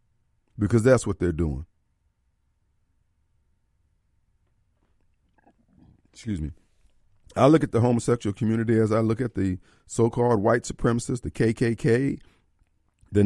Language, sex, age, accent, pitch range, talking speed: English, male, 50-69, American, 90-120 Hz, 110 wpm